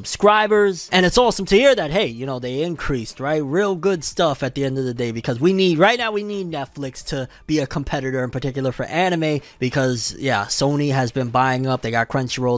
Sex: male